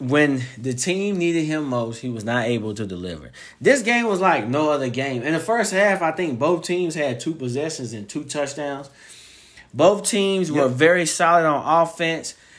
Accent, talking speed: American, 190 wpm